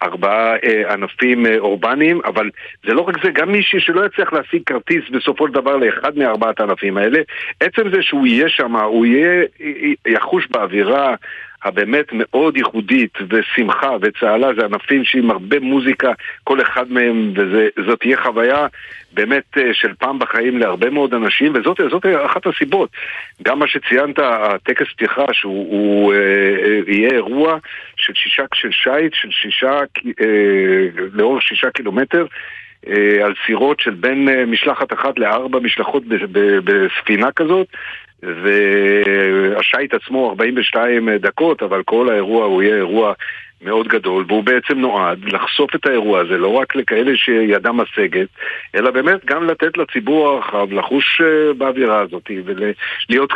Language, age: Hebrew, 50-69